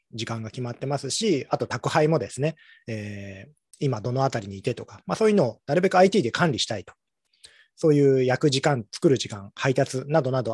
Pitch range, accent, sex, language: 115-150 Hz, native, male, Japanese